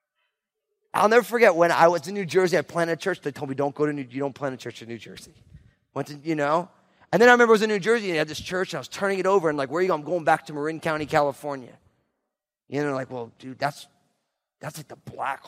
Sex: male